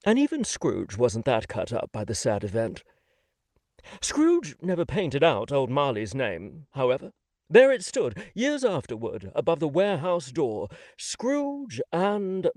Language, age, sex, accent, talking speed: English, 50-69, male, British, 145 wpm